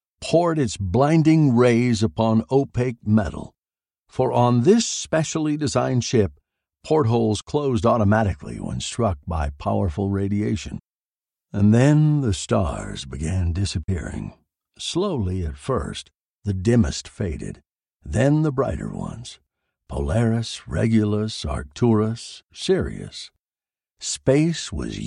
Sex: male